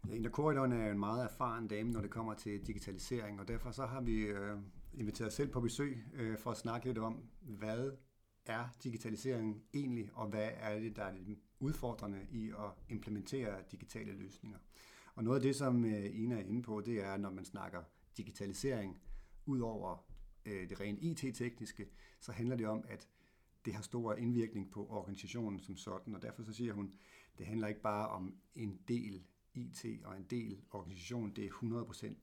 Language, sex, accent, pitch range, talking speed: Danish, male, native, 105-120 Hz, 185 wpm